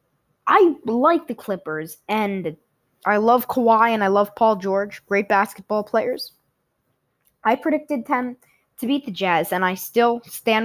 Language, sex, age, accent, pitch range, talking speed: English, female, 20-39, American, 185-255 Hz, 150 wpm